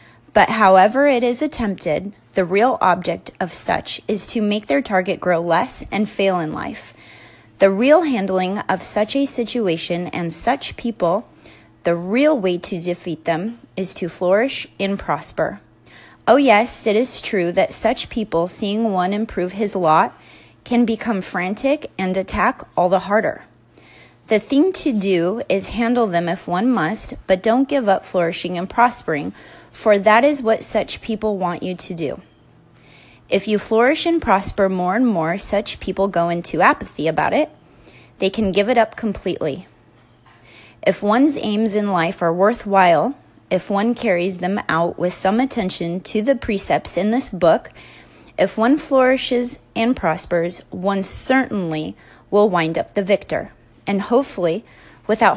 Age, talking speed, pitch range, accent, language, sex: 30-49, 160 wpm, 175-230 Hz, American, English, female